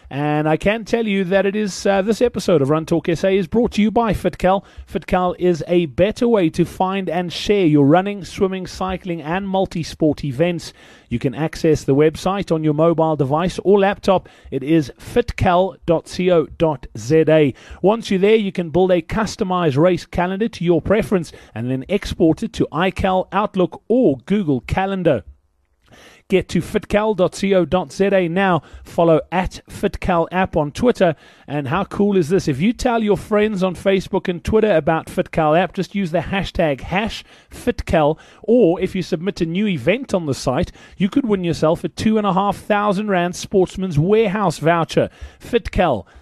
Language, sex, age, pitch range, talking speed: English, male, 30-49, 155-195 Hz, 165 wpm